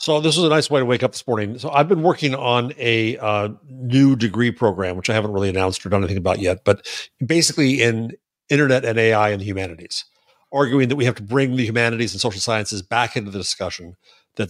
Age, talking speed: 50-69, 230 wpm